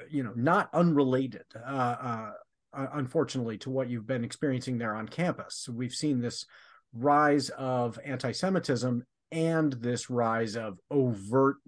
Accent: American